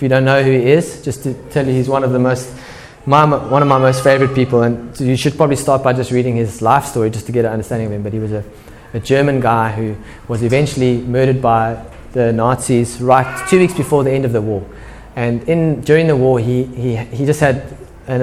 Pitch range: 120-140 Hz